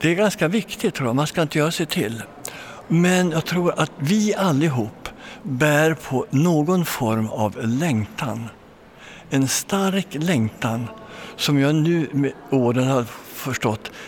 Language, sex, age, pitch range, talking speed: Swedish, male, 60-79, 115-165 Hz, 135 wpm